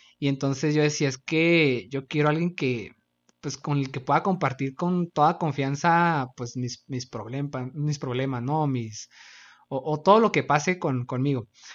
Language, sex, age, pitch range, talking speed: Spanish, male, 20-39, 135-180 Hz, 185 wpm